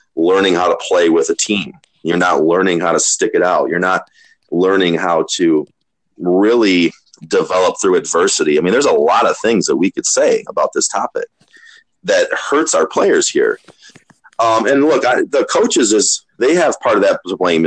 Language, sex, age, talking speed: English, male, 30-49, 185 wpm